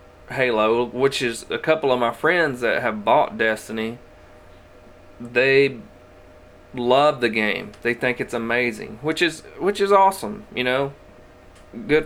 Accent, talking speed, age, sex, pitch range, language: American, 140 wpm, 30-49, male, 110-140 Hz, English